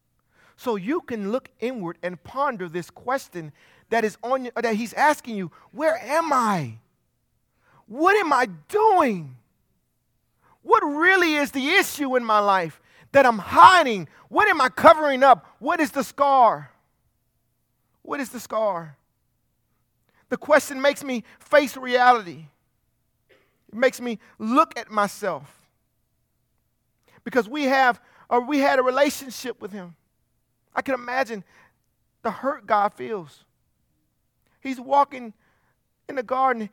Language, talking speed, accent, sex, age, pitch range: English, 130 wpm, American, male, 40-59, 165-270 Hz